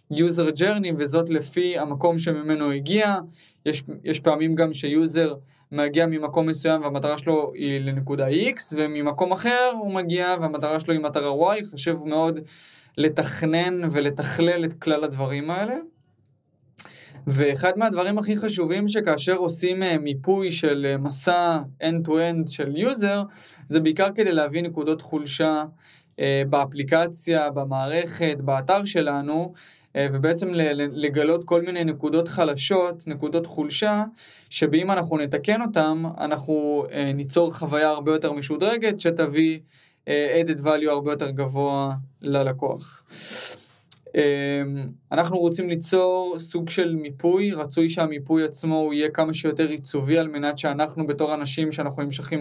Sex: male